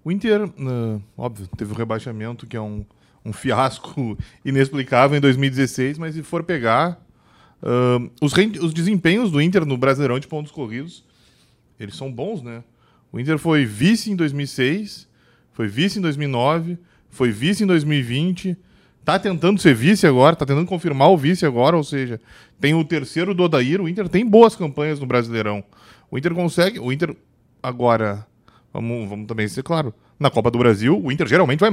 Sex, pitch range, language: male, 130-190 Hz, Portuguese